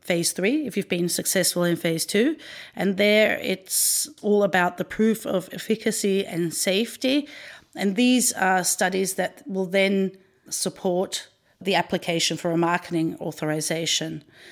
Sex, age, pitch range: female, 40-59, 175-220 Hz